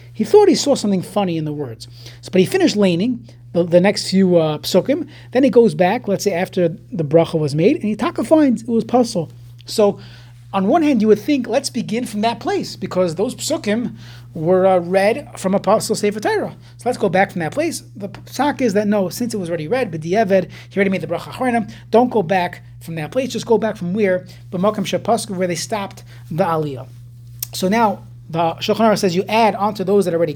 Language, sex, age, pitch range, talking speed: English, male, 30-49, 155-215 Hz, 225 wpm